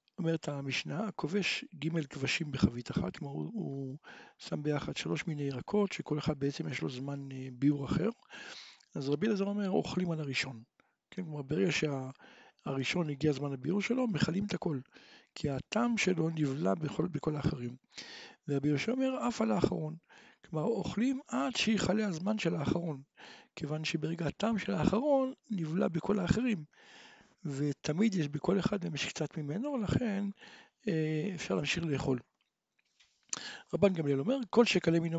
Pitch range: 150-205 Hz